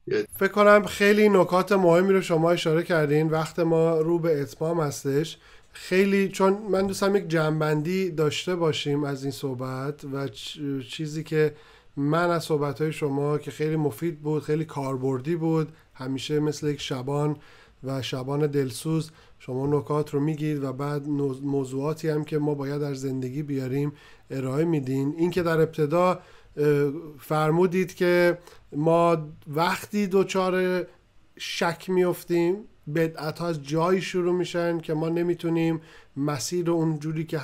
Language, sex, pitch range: Persian, male, 145-170 Hz